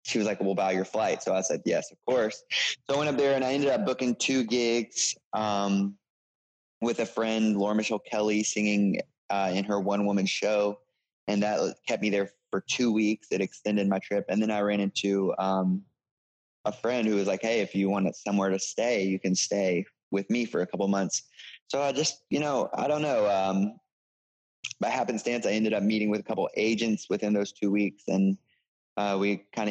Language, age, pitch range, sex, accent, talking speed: English, 20-39, 100-110 Hz, male, American, 215 wpm